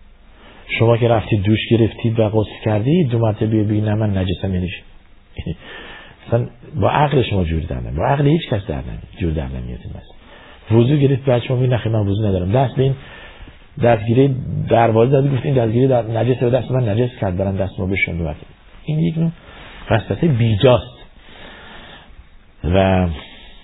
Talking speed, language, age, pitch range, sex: 160 wpm, Persian, 50-69, 90-130 Hz, male